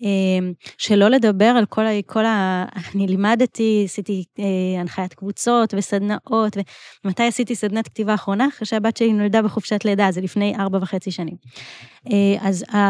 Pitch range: 195-235 Hz